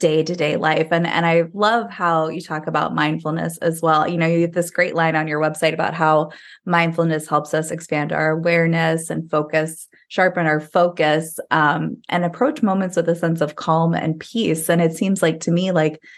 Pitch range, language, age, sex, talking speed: 160-190 Hz, English, 20-39, female, 210 wpm